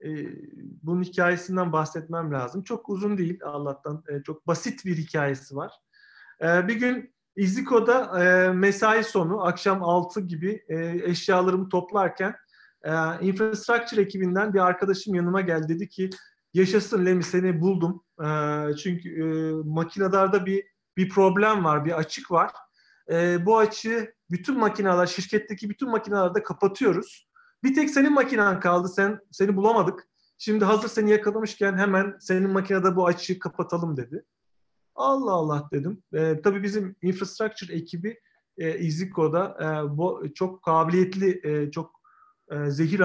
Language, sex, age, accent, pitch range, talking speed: Turkish, male, 40-59, native, 165-205 Hz, 135 wpm